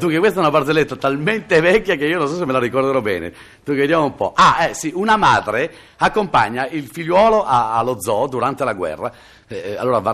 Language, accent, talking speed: Italian, native, 215 wpm